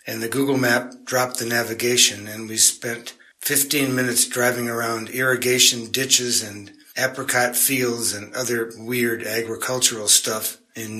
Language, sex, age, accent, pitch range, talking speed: English, male, 60-79, American, 115-125 Hz, 135 wpm